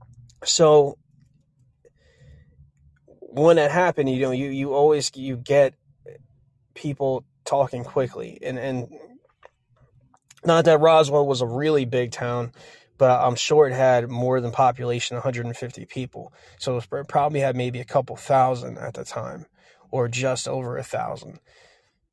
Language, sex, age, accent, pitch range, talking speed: English, male, 20-39, American, 130-155 Hz, 140 wpm